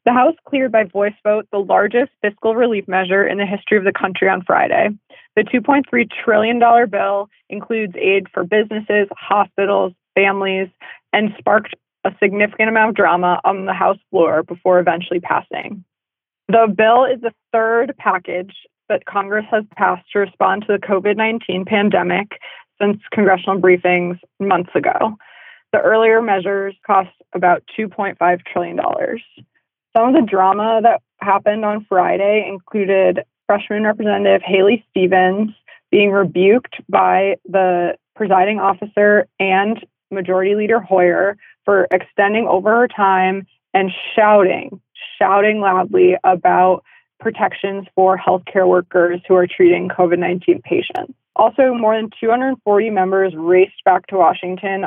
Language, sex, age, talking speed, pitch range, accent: English, female, 20-39, 135 wpm, 185-220 Hz, American